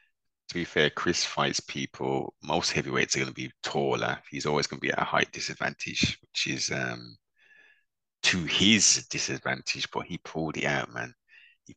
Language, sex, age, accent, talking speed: English, male, 30-49, British, 180 wpm